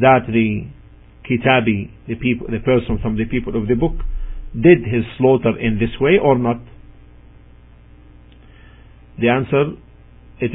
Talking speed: 130 wpm